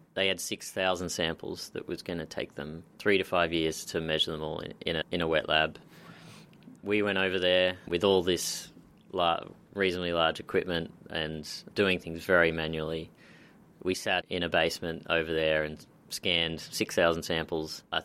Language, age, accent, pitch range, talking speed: English, 30-49, Australian, 80-95 Hz, 165 wpm